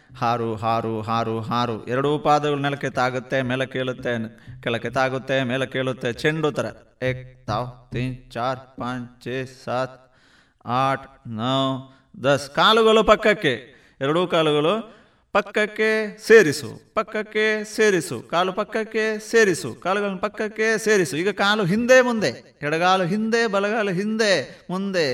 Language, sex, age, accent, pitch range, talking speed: Kannada, male, 30-49, native, 120-175 Hz, 105 wpm